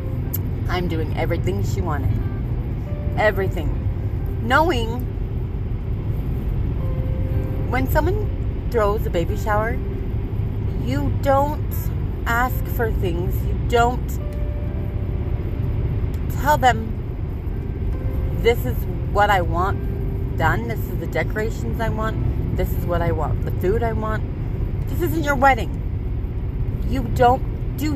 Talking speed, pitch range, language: 105 wpm, 95-115 Hz, English